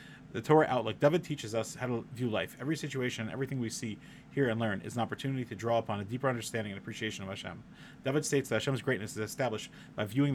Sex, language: male, English